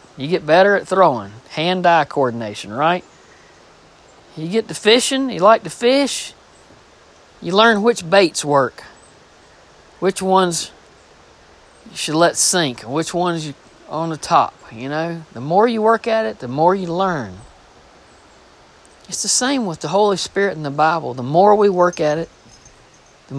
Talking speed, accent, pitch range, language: 160 wpm, American, 130-180 Hz, English